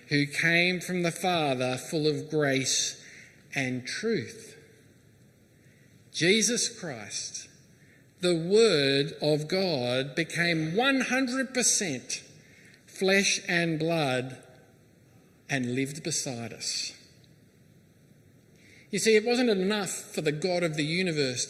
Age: 50-69